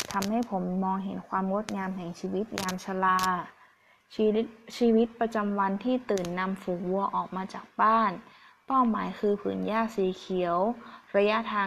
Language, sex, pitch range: Thai, female, 185-225 Hz